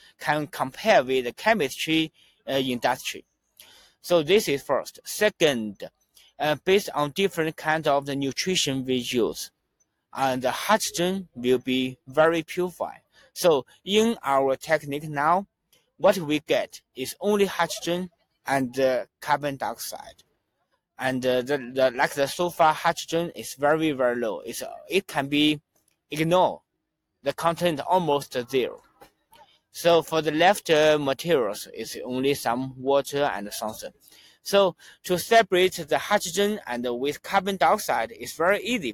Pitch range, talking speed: 135-180 Hz, 140 wpm